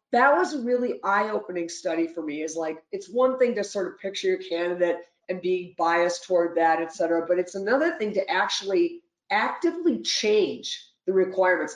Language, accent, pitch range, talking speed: English, American, 170-230 Hz, 185 wpm